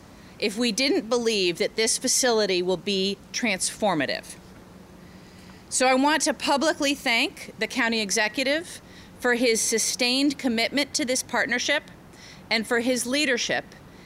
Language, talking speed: English, 130 wpm